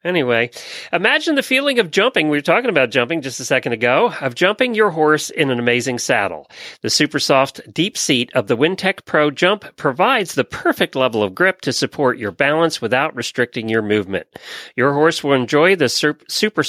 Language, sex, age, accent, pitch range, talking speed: English, male, 40-59, American, 125-180 Hz, 185 wpm